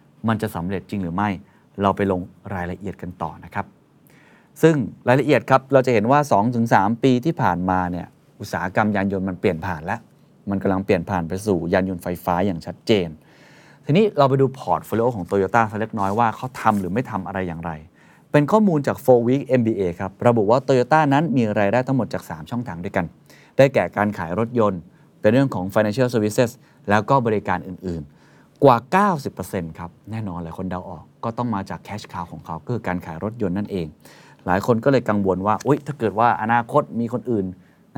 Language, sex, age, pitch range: Thai, male, 30-49, 95-130 Hz